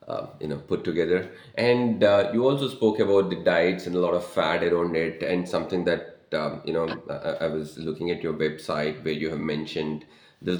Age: 30-49